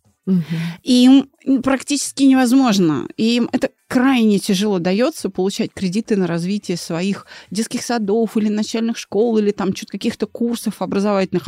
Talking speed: 125 wpm